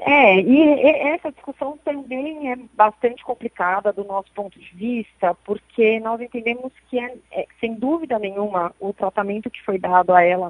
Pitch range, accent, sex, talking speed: 200-235 Hz, Brazilian, female, 155 wpm